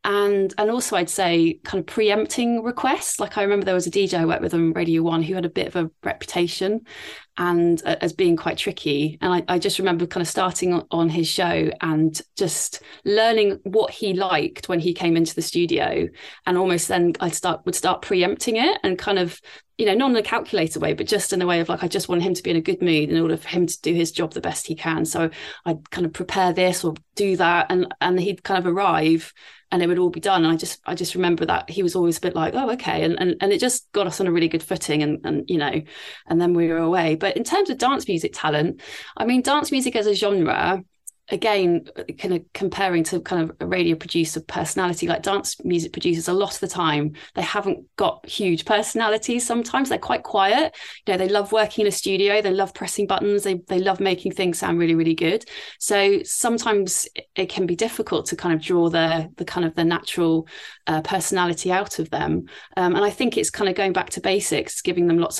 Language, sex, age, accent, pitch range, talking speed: English, female, 20-39, British, 170-200 Hz, 240 wpm